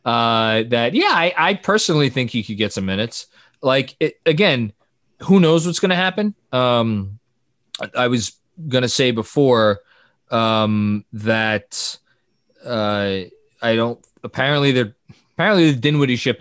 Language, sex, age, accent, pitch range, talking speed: English, male, 20-39, American, 115-155 Hz, 145 wpm